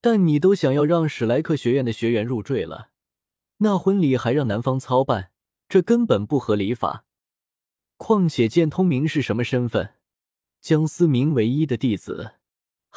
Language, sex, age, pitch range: Chinese, male, 20-39, 115-160 Hz